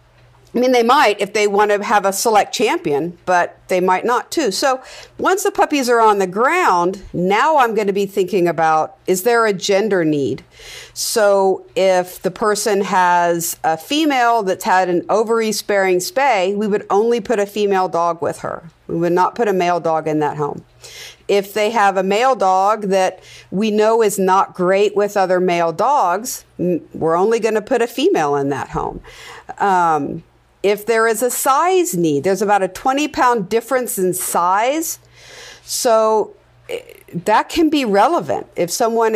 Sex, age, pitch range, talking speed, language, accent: female, 50-69, 185-240 Hz, 180 wpm, English, American